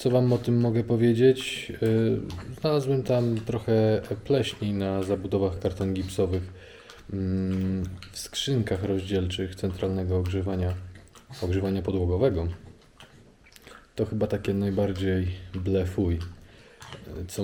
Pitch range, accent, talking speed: 95-120 Hz, native, 95 wpm